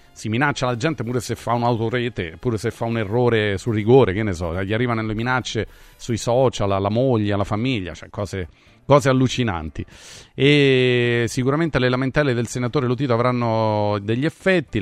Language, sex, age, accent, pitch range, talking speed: Italian, male, 30-49, native, 105-140 Hz, 170 wpm